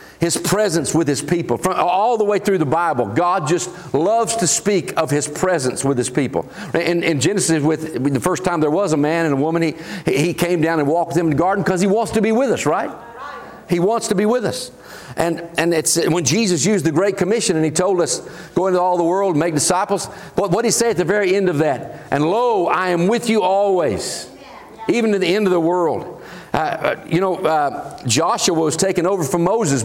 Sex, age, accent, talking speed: male, 50-69, American, 235 wpm